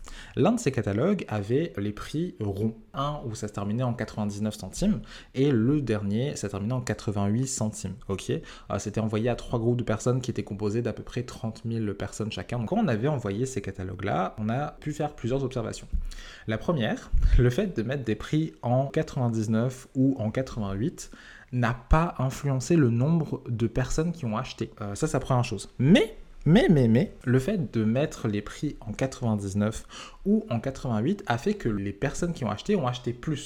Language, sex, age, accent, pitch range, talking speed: French, male, 20-39, French, 105-135 Hz, 200 wpm